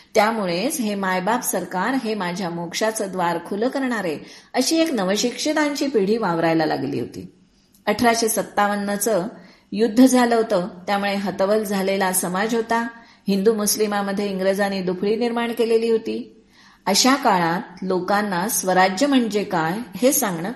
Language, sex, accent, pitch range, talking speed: Marathi, female, native, 185-235 Hz, 125 wpm